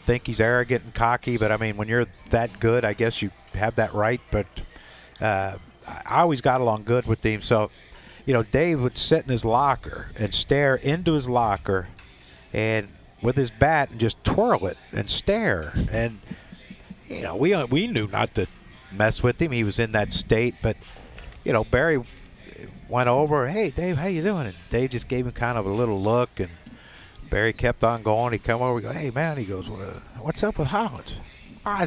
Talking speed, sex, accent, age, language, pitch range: 205 wpm, male, American, 50-69, English, 105-130 Hz